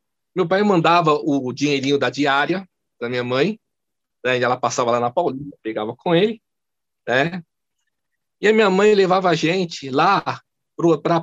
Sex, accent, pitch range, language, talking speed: male, Brazilian, 155-210 Hz, Portuguese, 165 wpm